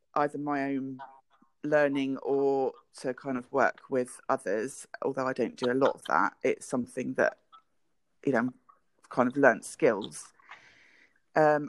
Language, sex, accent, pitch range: English, female, British, 130-155 Hz